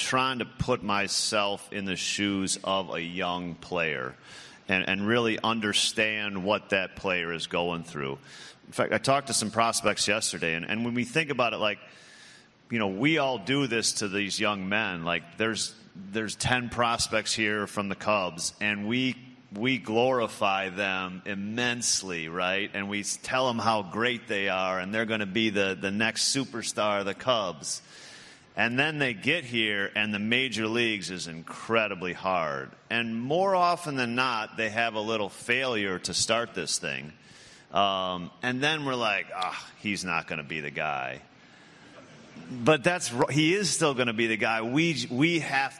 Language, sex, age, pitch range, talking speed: English, male, 30-49, 100-125 Hz, 180 wpm